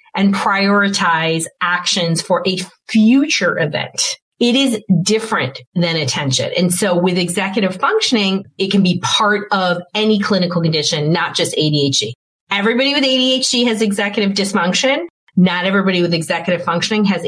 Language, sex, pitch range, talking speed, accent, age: English, female, 160-205 Hz, 140 wpm, American, 30-49